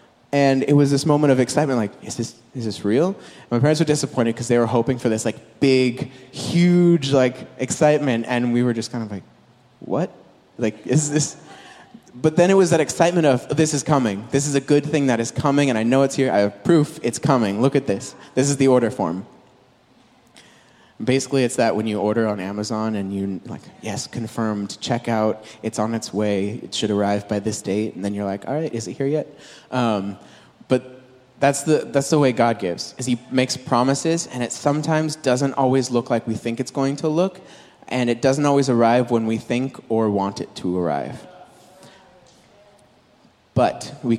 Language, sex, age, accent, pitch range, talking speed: English, male, 20-39, American, 110-140 Hz, 205 wpm